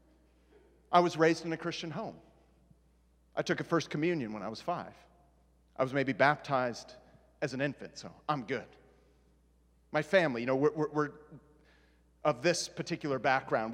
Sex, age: male, 40-59